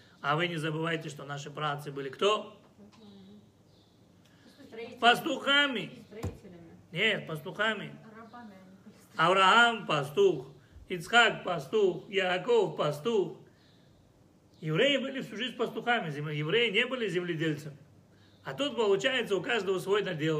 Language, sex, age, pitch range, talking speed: Russian, male, 40-59, 150-215 Hz, 100 wpm